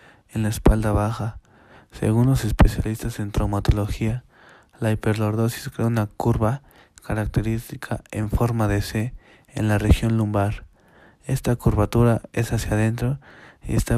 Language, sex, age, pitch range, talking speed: Spanish, male, 20-39, 105-115 Hz, 130 wpm